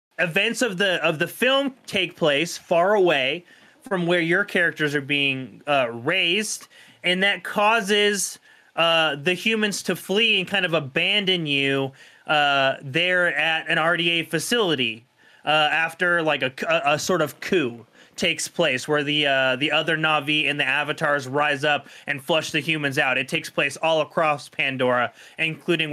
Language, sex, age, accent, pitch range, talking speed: English, male, 30-49, American, 150-185 Hz, 160 wpm